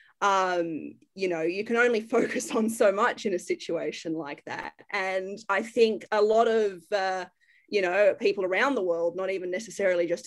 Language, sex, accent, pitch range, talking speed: English, female, Australian, 190-265 Hz, 185 wpm